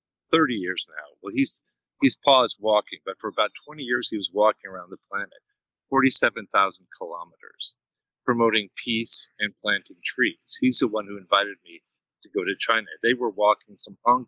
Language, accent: English, American